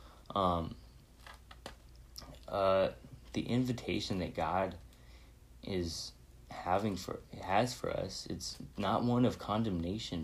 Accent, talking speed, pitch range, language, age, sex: American, 100 wpm, 80-100 Hz, English, 20-39, male